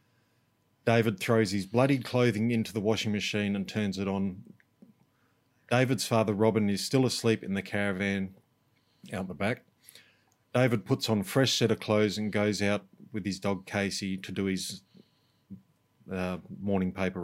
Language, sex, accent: English, male, Australian